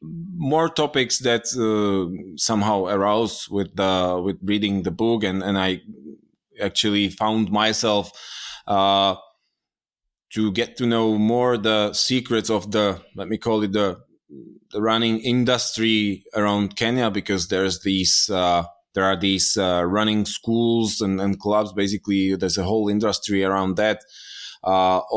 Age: 20-39